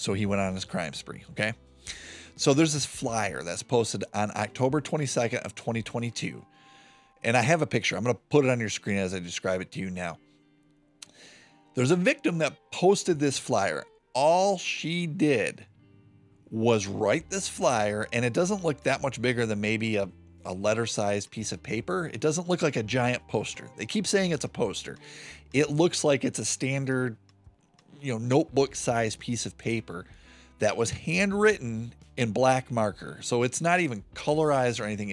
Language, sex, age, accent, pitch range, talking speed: English, male, 30-49, American, 100-145 Hz, 180 wpm